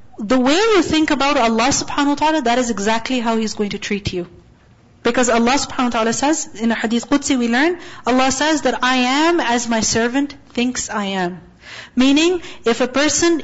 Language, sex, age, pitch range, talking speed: English, female, 40-59, 240-315 Hz, 200 wpm